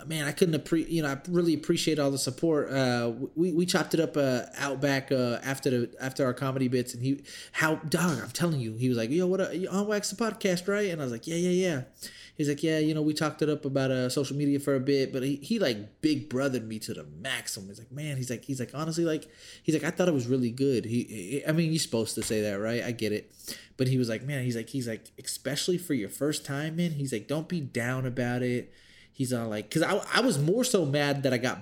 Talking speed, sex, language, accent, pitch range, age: 275 wpm, male, English, American, 125-155 Hz, 20-39